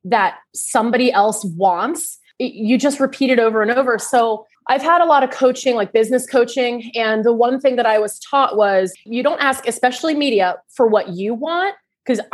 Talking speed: 195 wpm